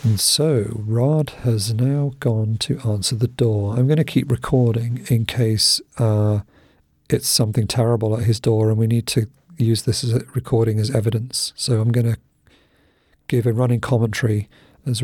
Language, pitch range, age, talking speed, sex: English, 110-125 Hz, 40-59, 170 wpm, male